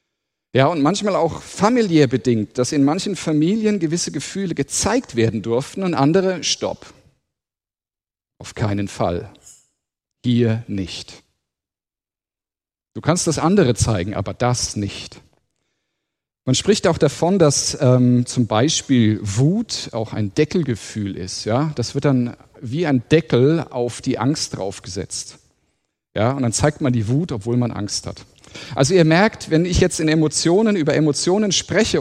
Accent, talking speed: German, 145 wpm